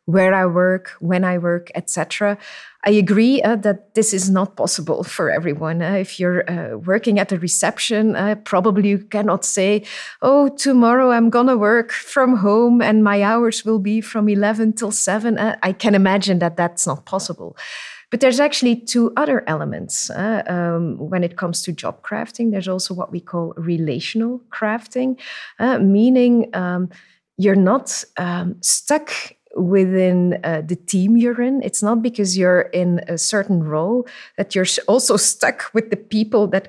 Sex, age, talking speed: female, 30-49, 170 wpm